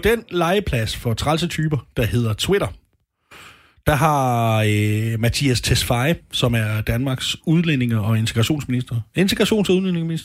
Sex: male